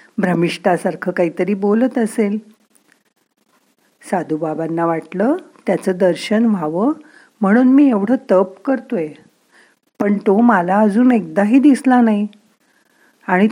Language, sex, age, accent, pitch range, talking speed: Marathi, female, 50-69, native, 180-235 Hz, 100 wpm